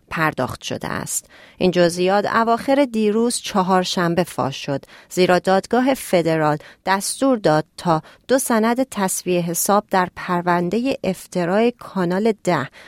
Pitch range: 160-210 Hz